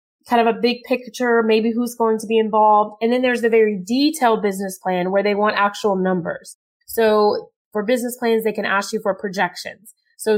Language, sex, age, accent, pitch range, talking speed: English, female, 20-39, American, 195-235 Hz, 200 wpm